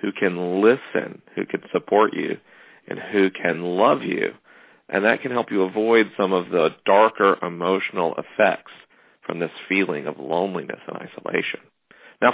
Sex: male